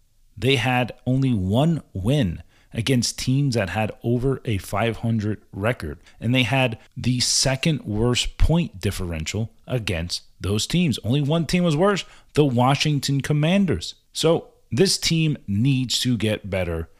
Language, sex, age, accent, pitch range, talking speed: English, male, 40-59, American, 95-130 Hz, 140 wpm